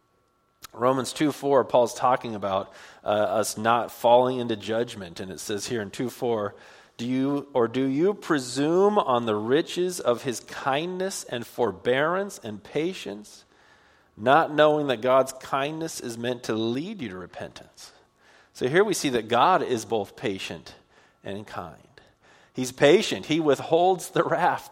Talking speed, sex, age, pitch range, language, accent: 155 wpm, male, 40-59, 115-145 Hz, English, American